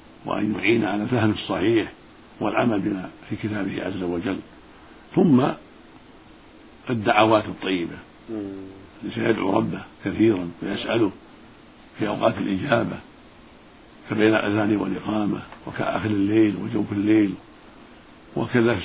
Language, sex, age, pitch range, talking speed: Arabic, male, 60-79, 105-115 Hz, 95 wpm